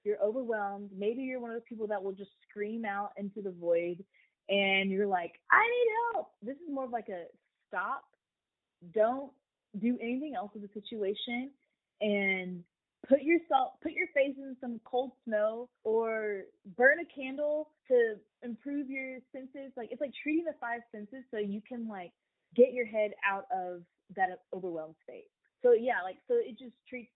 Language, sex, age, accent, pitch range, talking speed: English, female, 20-39, American, 195-260 Hz, 175 wpm